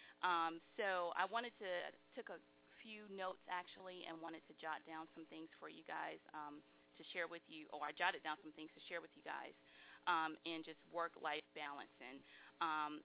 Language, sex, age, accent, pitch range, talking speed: English, female, 30-49, American, 155-185 Hz, 200 wpm